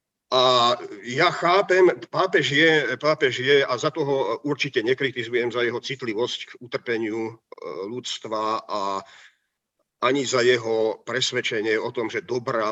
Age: 50-69